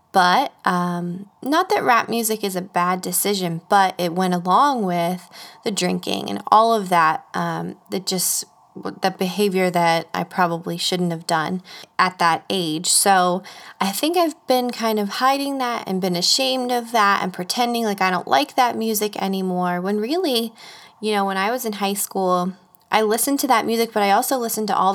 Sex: female